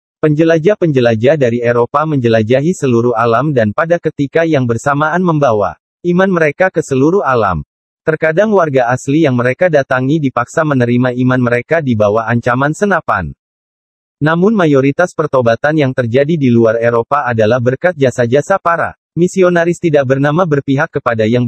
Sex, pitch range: male, 120-165 Hz